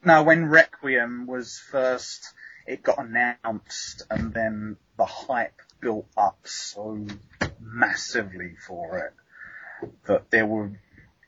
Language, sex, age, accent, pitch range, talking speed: English, male, 30-49, British, 110-145 Hz, 110 wpm